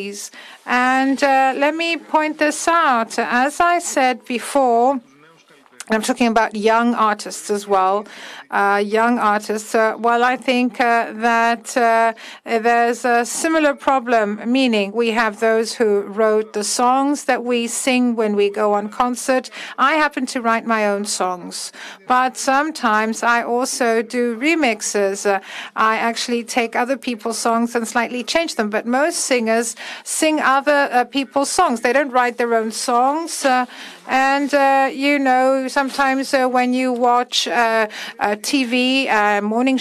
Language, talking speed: Greek, 150 wpm